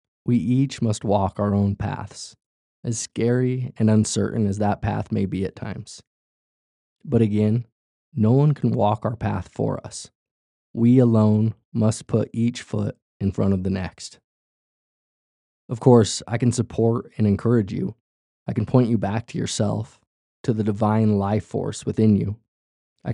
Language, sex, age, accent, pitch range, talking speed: English, male, 20-39, American, 100-115 Hz, 160 wpm